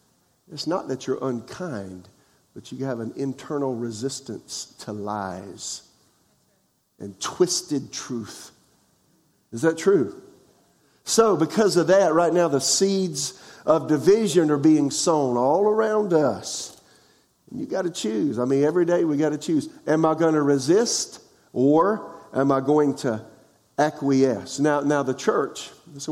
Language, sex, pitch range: English, male, 115-155 Hz